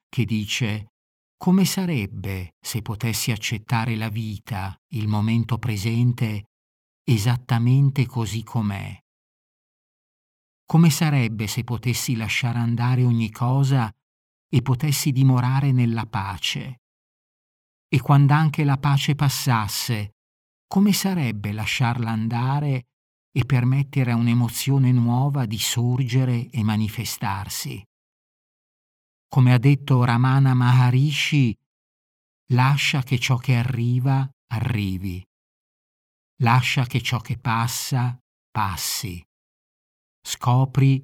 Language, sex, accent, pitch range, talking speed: Italian, male, native, 110-135 Hz, 95 wpm